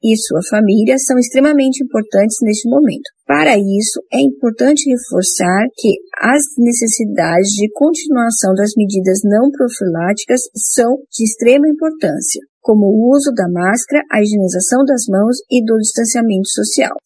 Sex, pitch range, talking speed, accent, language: female, 215-280 Hz, 135 wpm, Brazilian, Portuguese